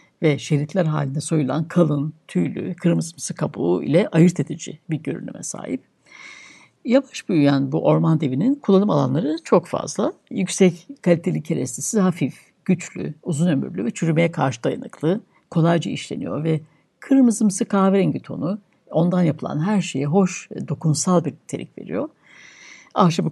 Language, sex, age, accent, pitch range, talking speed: Turkish, female, 60-79, native, 150-195 Hz, 130 wpm